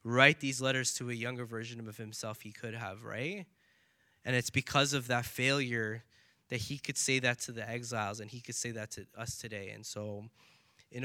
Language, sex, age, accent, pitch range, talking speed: English, male, 20-39, American, 110-130 Hz, 205 wpm